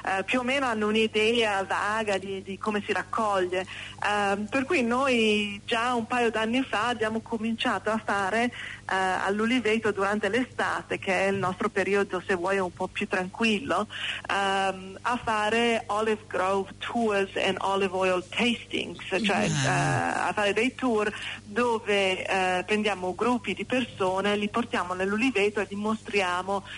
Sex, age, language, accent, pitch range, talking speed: female, 40-59, Italian, native, 185-220 Hz, 150 wpm